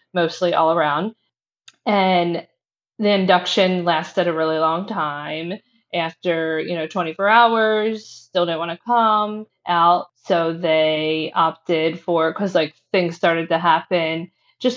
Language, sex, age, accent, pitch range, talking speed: English, female, 20-39, American, 165-200 Hz, 135 wpm